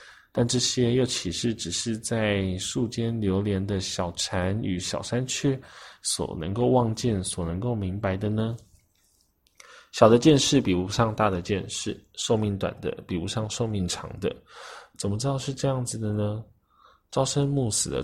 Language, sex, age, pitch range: Chinese, male, 20-39, 90-115 Hz